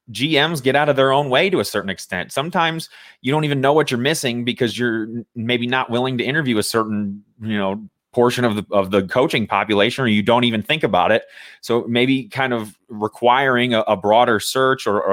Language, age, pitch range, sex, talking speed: English, 30-49, 105-140 Hz, male, 215 wpm